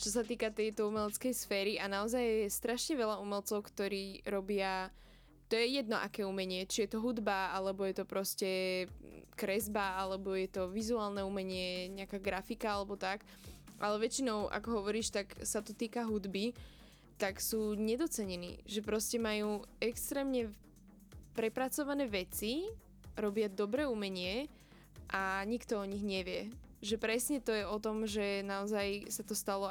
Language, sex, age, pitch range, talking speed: Slovak, female, 10-29, 195-225 Hz, 150 wpm